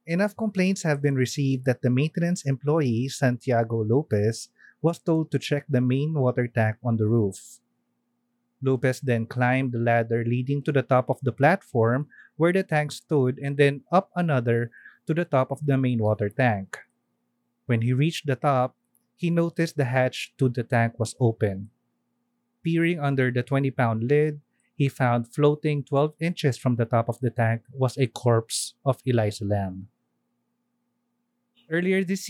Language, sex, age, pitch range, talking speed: Filipino, male, 30-49, 120-150 Hz, 165 wpm